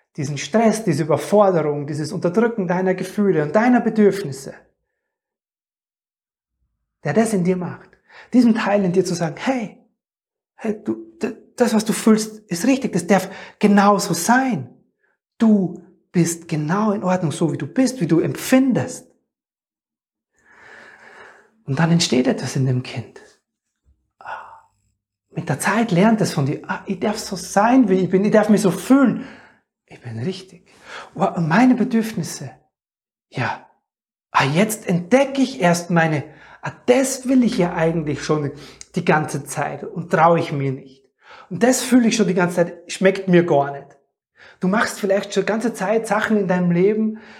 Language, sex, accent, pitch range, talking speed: German, male, German, 170-220 Hz, 160 wpm